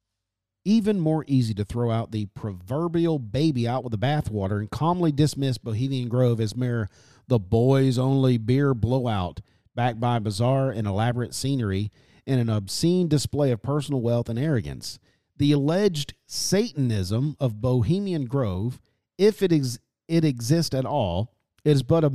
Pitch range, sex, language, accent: 115-160 Hz, male, English, American